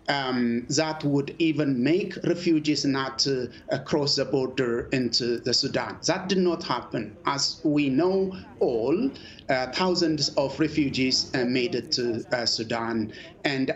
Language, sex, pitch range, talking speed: English, male, 125-155 Hz, 145 wpm